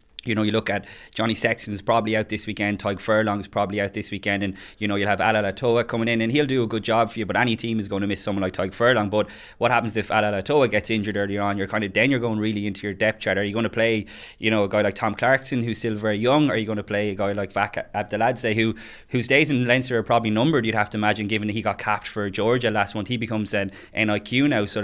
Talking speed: 290 wpm